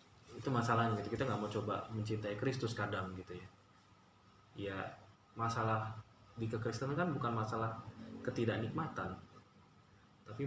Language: Indonesian